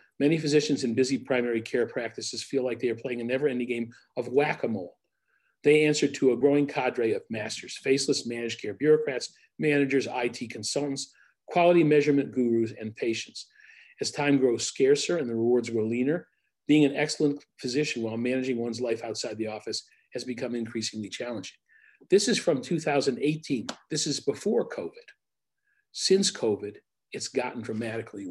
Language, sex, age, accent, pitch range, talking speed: English, male, 50-69, American, 120-175 Hz, 155 wpm